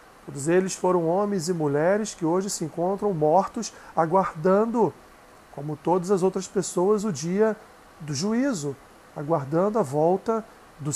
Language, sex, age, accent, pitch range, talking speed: Portuguese, male, 40-59, Brazilian, 160-200 Hz, 135 wpm